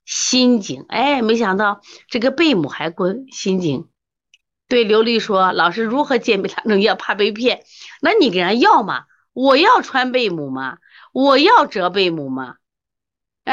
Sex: female